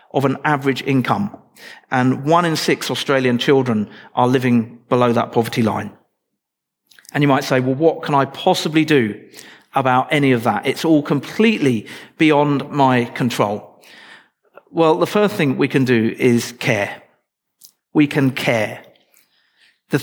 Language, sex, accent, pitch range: English, male, British, 125-160 Hz